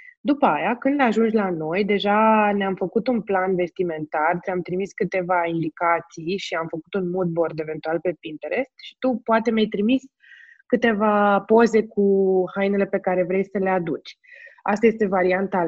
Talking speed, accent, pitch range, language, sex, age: 160 wpm, native, 180-240 Hz, Romanian, female, 20-39